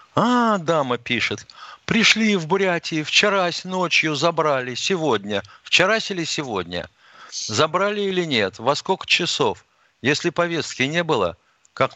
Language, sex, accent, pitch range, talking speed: Russian, male, native, 105-155 Hz, 120 wpm